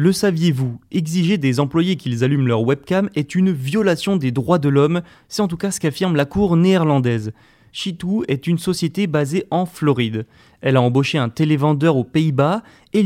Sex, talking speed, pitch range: male, 185 wpm, 135-170 Hz